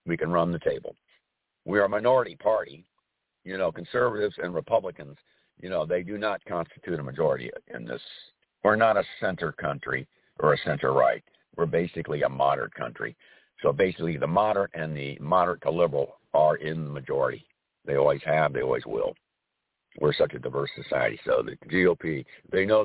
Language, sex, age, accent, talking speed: English, male, 60-79, American, 180 wpm